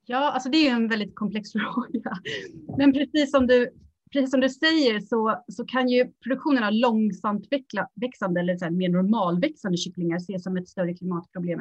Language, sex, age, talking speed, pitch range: Swedish, female, 30-49, 175 wpm, 180-245 Hz